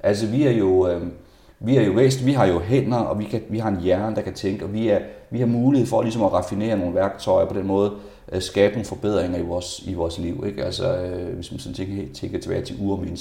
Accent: native